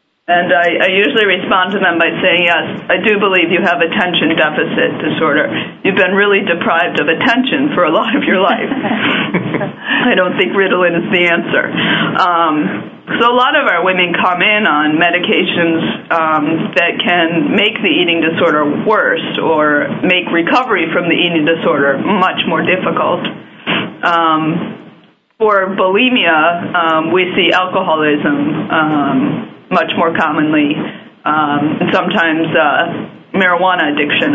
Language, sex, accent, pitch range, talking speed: English, female, American, 165-210 Hz, 145 wpm